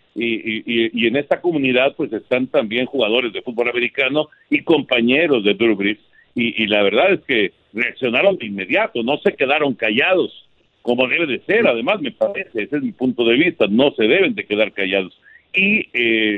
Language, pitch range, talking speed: Spanish, 120-165 Hz, 190 wpm